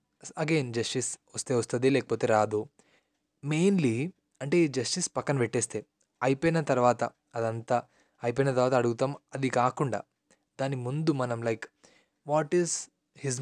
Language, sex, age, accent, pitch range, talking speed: Telugu, male, 20-39, native, 120-150 Hz, 120 wpm